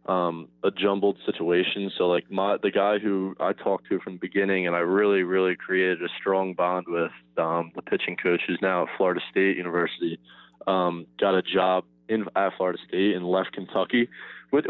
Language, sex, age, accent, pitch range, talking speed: English, male, 20-39, American, 85-100 Hz, 190 wpm